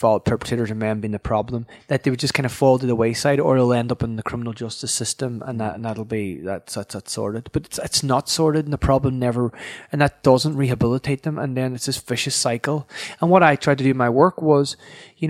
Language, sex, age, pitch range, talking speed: English, male, 20-39, 120-145 Hz, 255 wpm